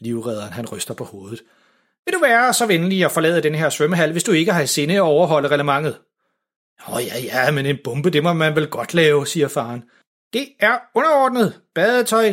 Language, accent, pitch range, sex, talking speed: Danish, native, 140-225 Hz, male, 210 wpm